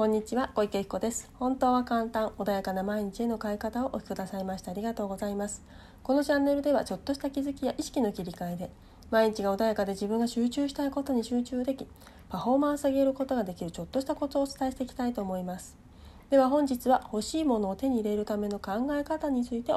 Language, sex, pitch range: Japanese, female, 200-265 Hz